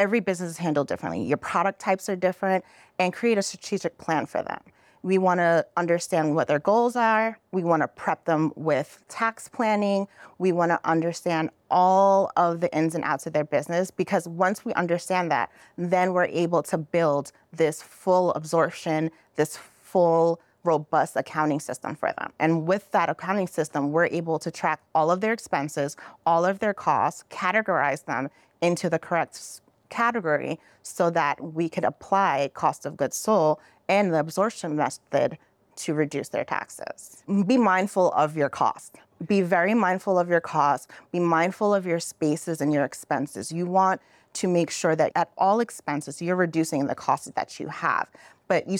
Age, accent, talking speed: 30-49, American, 175 wpm